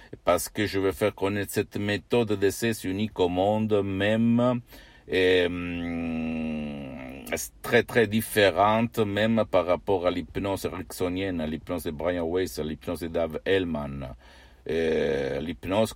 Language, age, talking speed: Italian, 60-79, 135 wpm